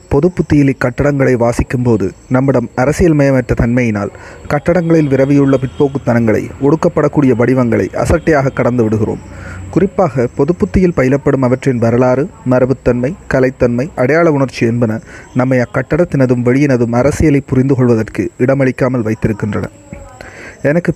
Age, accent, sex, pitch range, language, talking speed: 30-49, native, male, 120-145 Hz, Tamil, 95 wpm